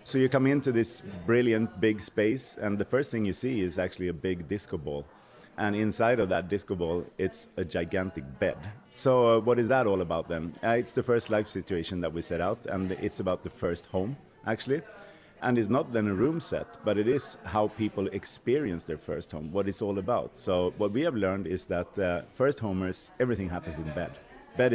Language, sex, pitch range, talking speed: English, male, 90-120 Hz, 220 wpm